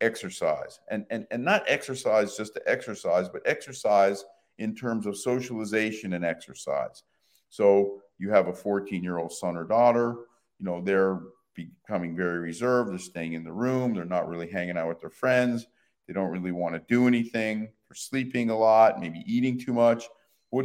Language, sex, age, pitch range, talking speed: English, male, 50-69, 90-115 Hz, 180 wpm